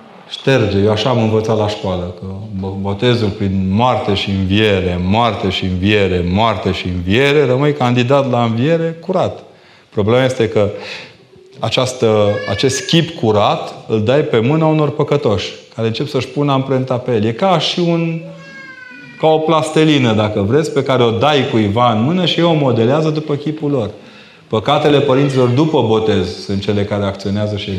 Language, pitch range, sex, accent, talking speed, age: Romanian, 100-135 Hz, male, native, 165 wpm, 30-49